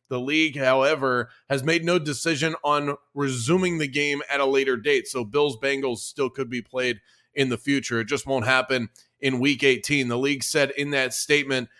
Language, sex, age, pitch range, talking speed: English, male, 30-49, 130-150 Hz, 190 wpm